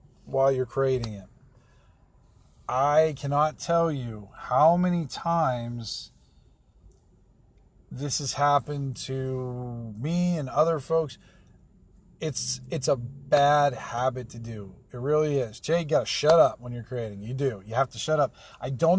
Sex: male